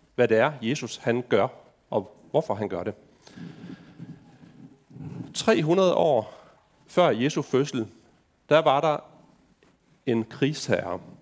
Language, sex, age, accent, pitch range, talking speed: Danish, male, 40-59, native, 120-170 Hz, 110 wpm